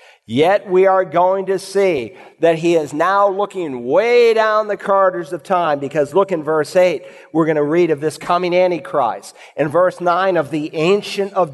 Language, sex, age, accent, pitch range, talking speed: English, male, 50-69, American, 155-195 Hz, 190 wpm